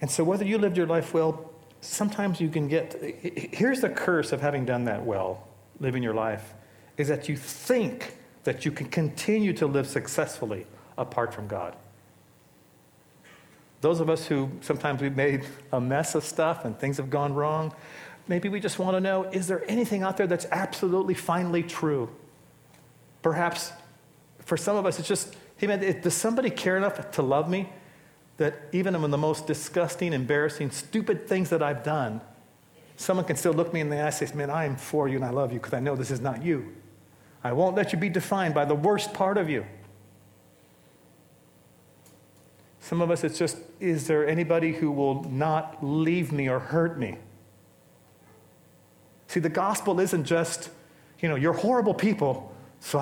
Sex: male